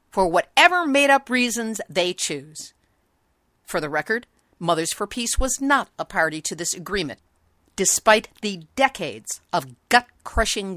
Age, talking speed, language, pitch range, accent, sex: 50-69, 135 wpm, English, 160-245 Hz, American, female